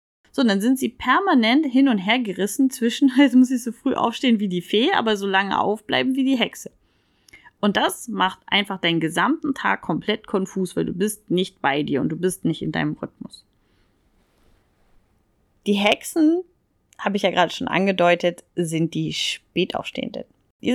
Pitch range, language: 185-260 Hz, German